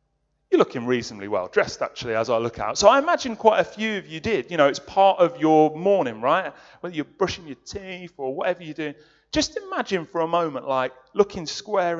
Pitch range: 130-185 Hz